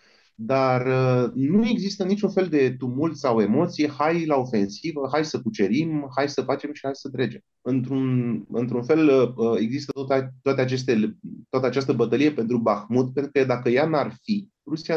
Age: 30-49